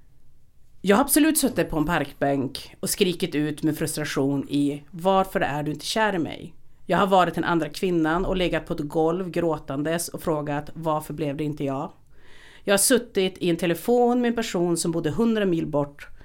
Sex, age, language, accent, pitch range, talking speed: female, 40-59, Swedish, native, 155-210 Hz, 195 wpm